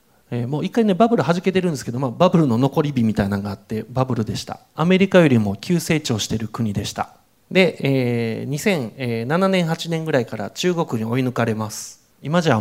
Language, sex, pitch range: Japanese, male, 115-170 Hz